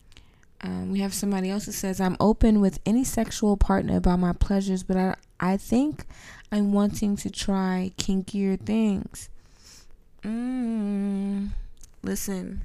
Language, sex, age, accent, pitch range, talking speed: English, female, 20-39, American, 175-205 Hz, 135 wpm